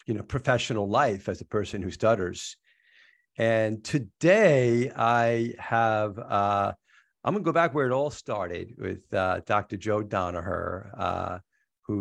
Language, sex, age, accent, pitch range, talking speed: English, male, 50-69, American, 95-115 Hz, 145 wpm